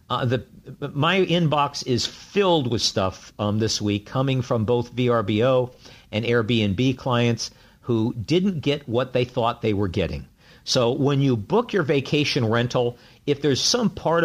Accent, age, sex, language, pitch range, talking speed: American, 50-69, male, English, 120-150 Hz, 160 wpm